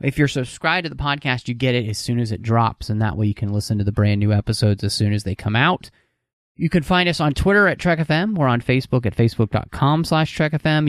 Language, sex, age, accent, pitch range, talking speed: English, male, 30-49, American, 110-145 Hz, 250 wpm